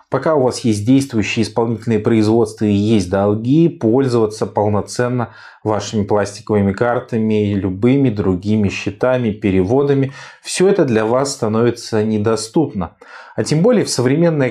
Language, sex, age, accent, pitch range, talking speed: Russian, male, 20-39, native, 105-135 Hz, 125 wpm